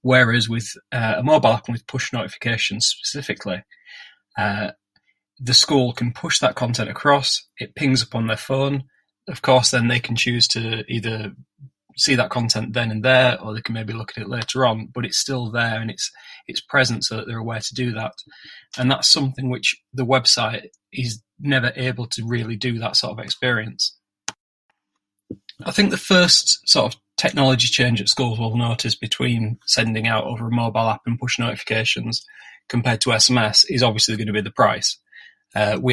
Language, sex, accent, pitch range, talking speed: English, male, British, 110-125 Hz, 185 wpm